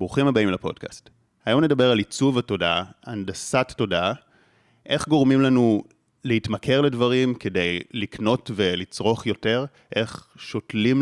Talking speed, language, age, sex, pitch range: 115 wpm, Hebrew, 30-49, male, 100-140 Hz